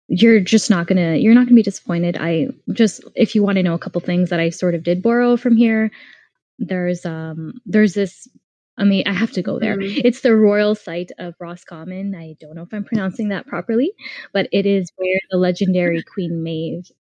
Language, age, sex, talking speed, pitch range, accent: English, 10-29, female, 220 wpm, 175-220 Hz, American